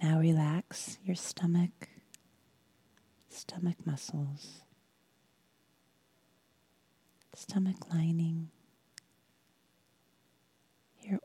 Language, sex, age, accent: English, female, 30-49, American